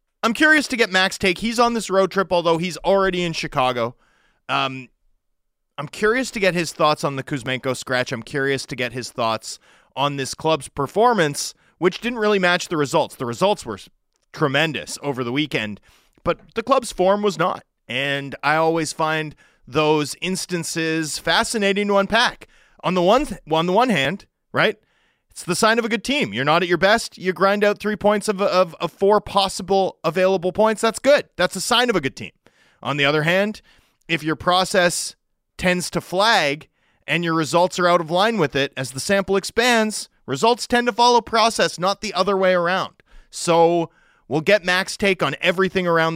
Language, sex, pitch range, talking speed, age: English, male, 155-220 Hz, 190 wpm, 30-49